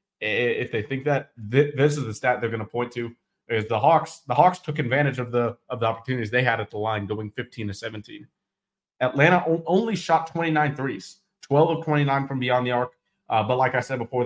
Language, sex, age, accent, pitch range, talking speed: English, male, 30-49, American, 115-135 Hz, 220 wpm